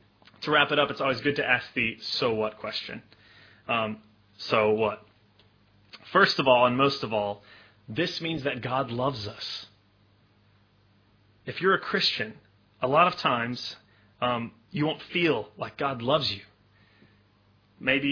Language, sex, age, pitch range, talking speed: English, male, 30-49, 105-130 Hz, 150 wpm